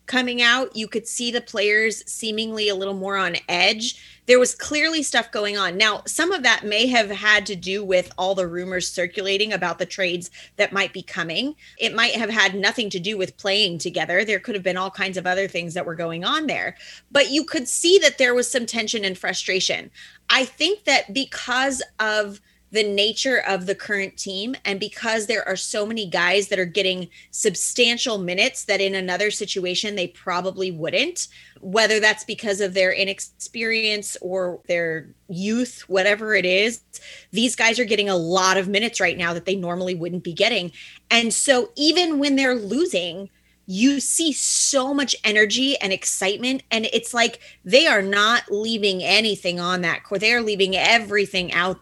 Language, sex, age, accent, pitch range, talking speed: English, female, 20-39, American, 190-235 Hz, 190 wpm